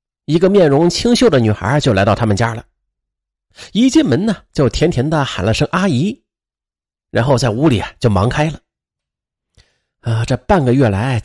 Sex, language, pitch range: male, Chinese, 115-190 Hz